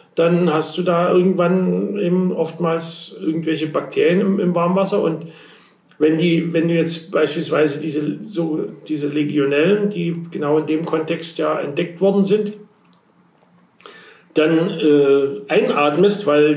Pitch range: 155-185 Hz